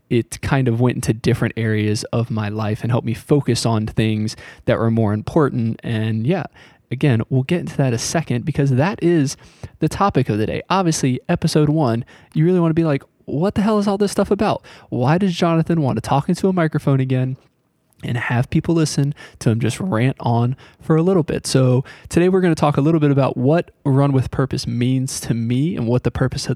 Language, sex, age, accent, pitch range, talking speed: English, male, 20-39, American, 115-150 Hz, 225 wpm